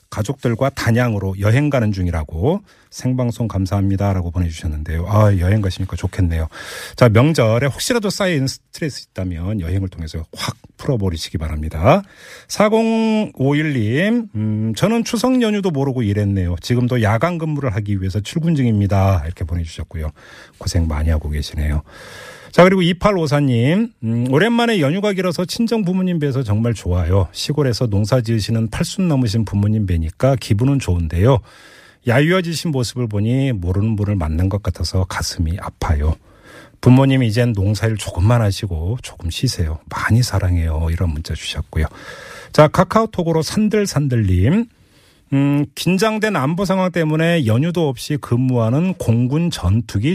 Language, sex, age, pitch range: Korean, male, 40-59, 95-155 Hz